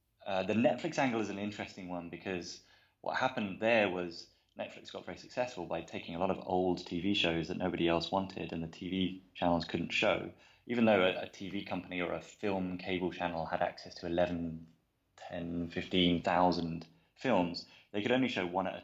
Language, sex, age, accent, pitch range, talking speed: English, male, 20-39, British, 85-100 Hz, 190 wpm